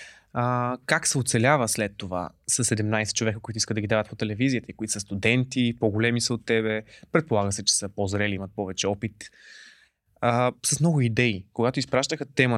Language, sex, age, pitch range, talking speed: Bulgarian, male, 20-39, 105-135 Hz, 180 wpm